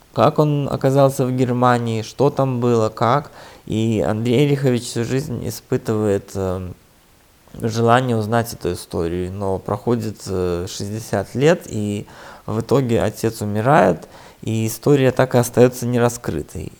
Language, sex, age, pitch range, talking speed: Russian, male, 20-39, 105-125 Hz, 120 wpm